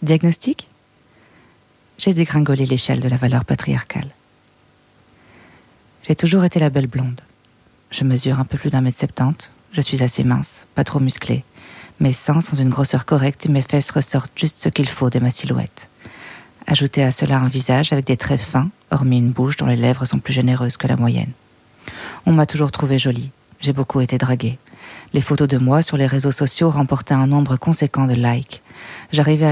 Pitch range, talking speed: 125-150 Hz, 185 wpm